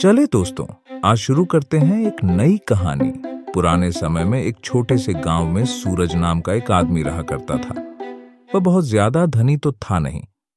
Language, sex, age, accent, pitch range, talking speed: Hindi, male, 40-59, native, 85-120 Hz, 180 wpm